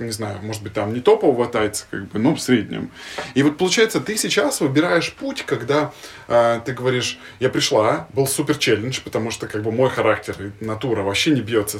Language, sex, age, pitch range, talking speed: Russian, male, 20-39, 115-150 Hz, 200 wpm